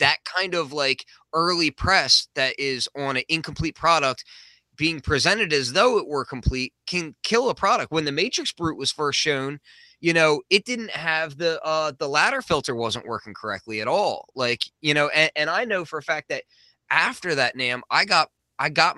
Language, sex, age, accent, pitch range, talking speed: English, male, 20-39, American, 135-175 Hz, 200 wpm